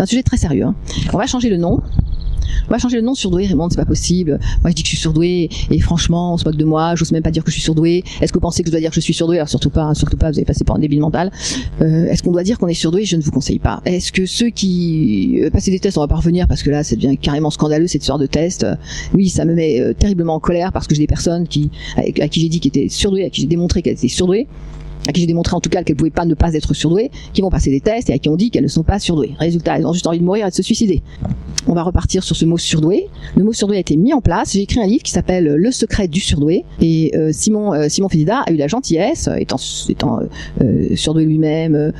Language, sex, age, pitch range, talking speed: French, female, 40-59, 155-190 Hz, 295 wpm